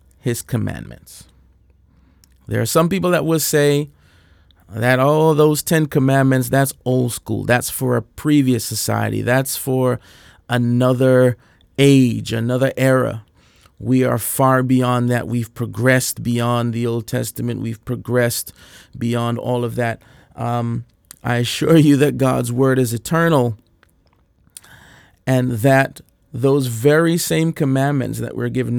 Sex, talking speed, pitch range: male, 130 wpm, 115-140 Hz